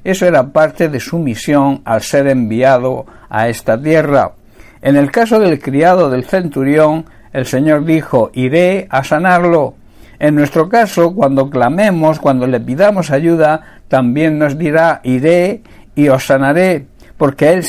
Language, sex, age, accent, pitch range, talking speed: Spanish, male, 60-79, Spanish, 130-165 Hz, 145 wpm